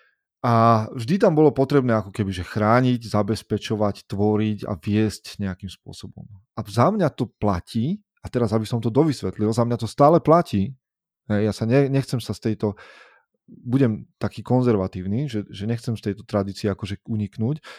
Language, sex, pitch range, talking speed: Slovak, male, 105-125 Hz, 160 wpm